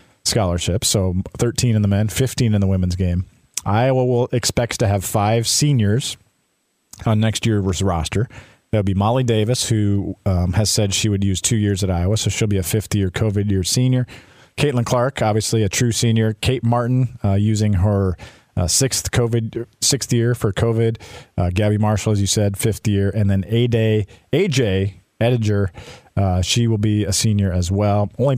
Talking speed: 180 wpm